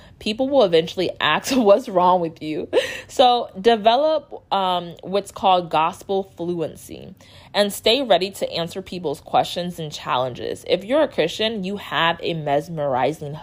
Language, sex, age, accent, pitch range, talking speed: English, female, 20-39, American, 155-210 Hz, 145 wpm